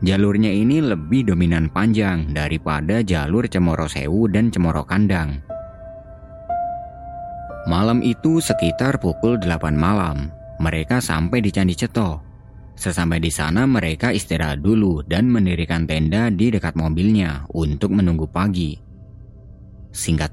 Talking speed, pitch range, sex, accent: 115 wpm, 80-115 Hz, male, native